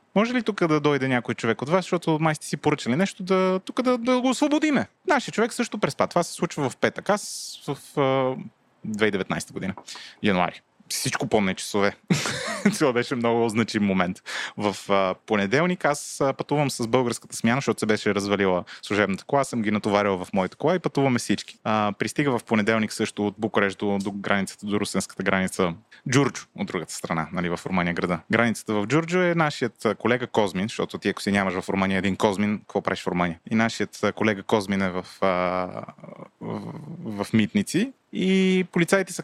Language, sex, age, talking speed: Bulgarian, male, 20-39, 185 wpm